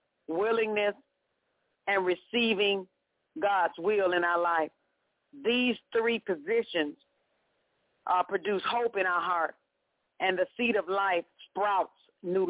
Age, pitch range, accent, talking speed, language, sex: 50-69, 195-265 Hz, American, 115 wpm, English, female